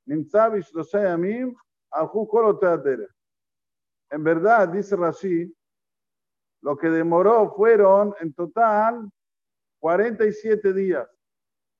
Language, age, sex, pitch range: Spanish, 50-69, male, 155-200 Hz